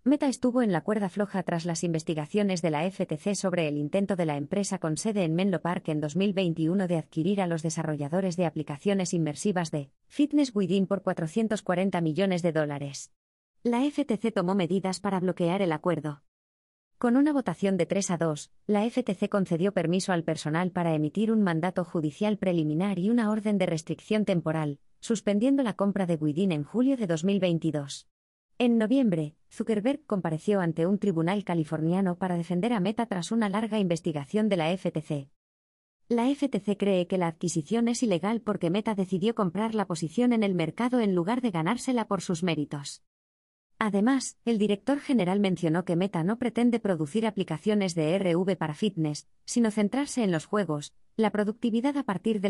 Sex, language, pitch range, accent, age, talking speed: female, Spanish, 165-215 Hz, Spanish, 20-39, 175 wpm